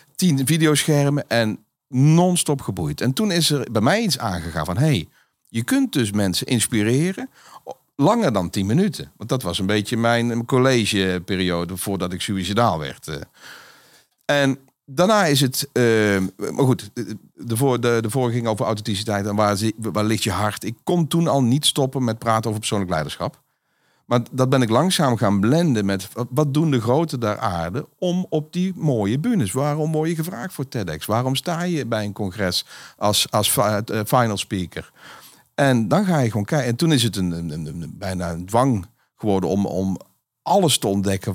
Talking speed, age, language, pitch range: 175 wpm, 50-69, Dutch, 105-140 Hz